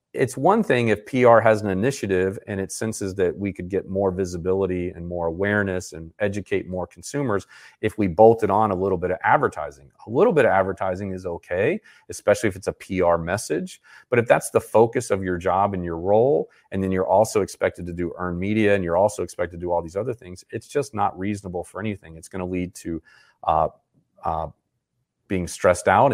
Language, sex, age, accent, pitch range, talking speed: English, male, 40-59, American, 90-110 Hz, 210 wpm